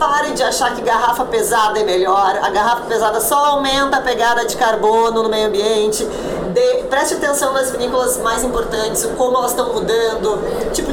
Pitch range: 230-315 Hz